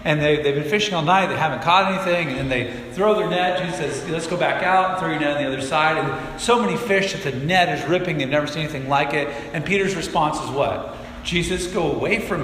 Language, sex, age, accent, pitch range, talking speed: English, male, 40-59, American, 135-170 Hz, 260 wpm